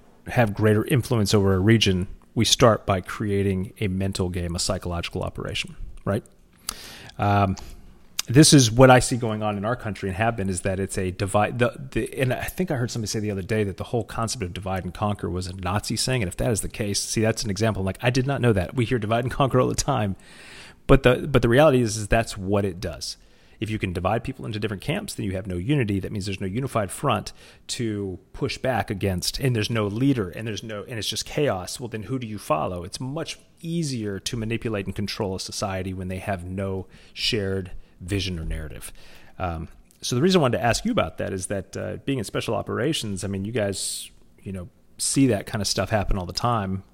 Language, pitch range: English, 95-115 Hz